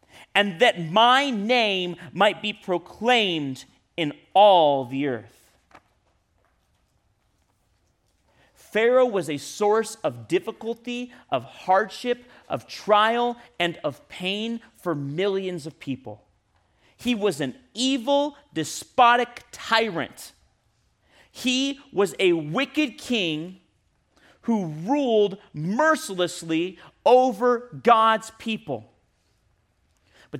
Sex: male